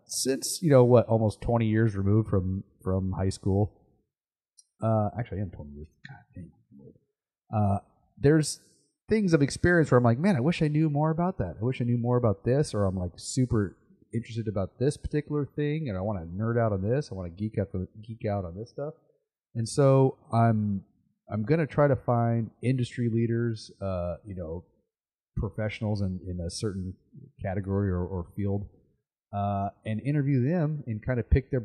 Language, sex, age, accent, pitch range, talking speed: English, male, 30-49, American, 95-130 Hz, 190 wpm